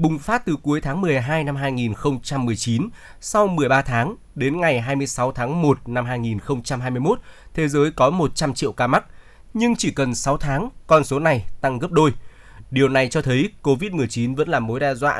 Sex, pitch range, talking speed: male, 125-160 Hz, 180 wpm